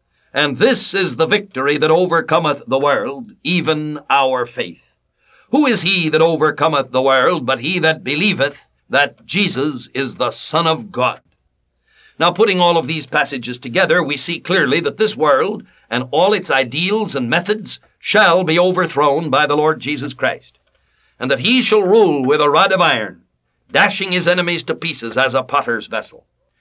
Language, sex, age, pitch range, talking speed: English, male, 60-79, 140-195 Hz, 170 wpm